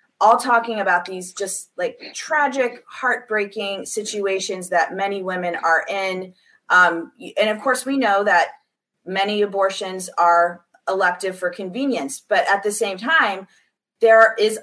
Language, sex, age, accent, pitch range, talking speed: English, female, 30-49, American, 175-215 Hz, 140 wpm